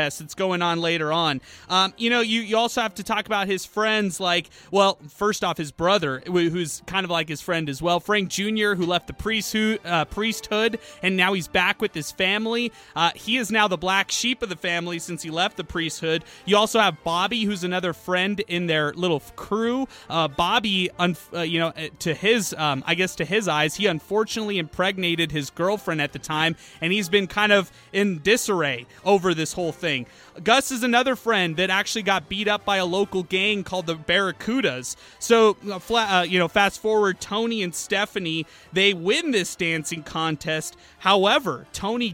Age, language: 30-49, English